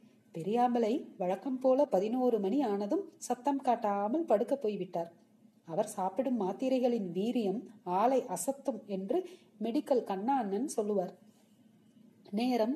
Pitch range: 205-265 Hz